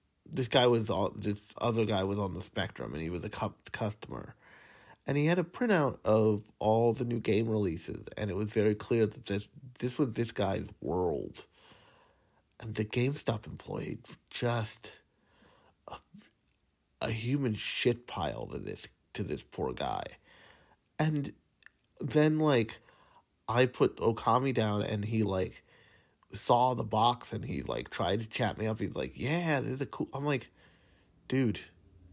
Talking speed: 160 wpm